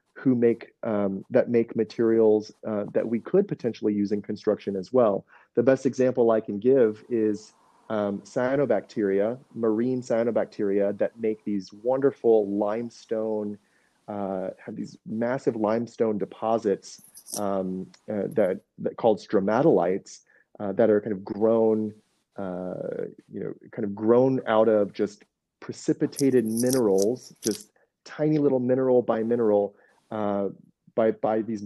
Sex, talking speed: male, 135 wpm